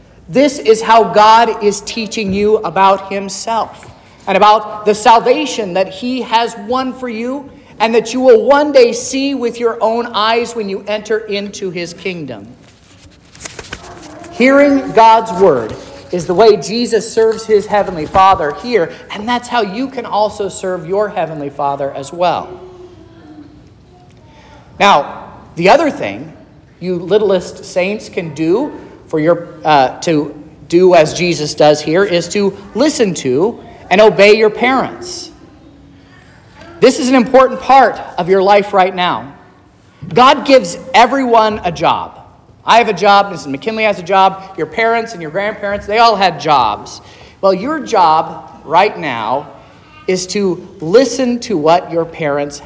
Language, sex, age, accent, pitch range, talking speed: English, male, 40-59, American, 175-230 Hz, 150 wpm